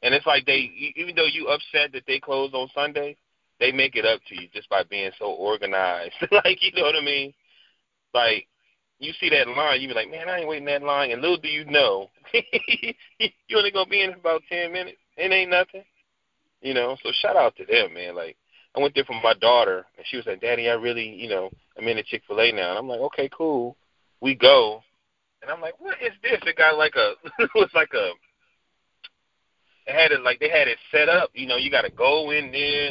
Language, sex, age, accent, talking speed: English, male, 30-49, American, 235 wpm